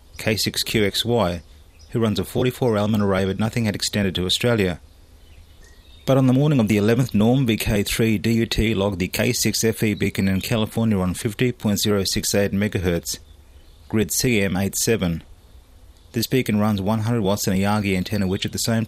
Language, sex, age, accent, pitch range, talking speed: English, male, 30-49, Australian, 90-115 Hz, 155 wpm